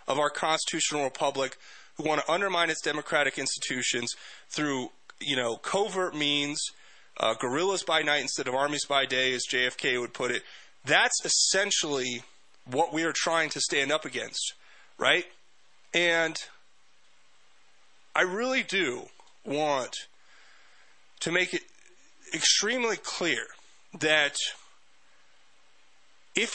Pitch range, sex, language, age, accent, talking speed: 130-170 Hz, male, English, 30-49, American, 120 wpm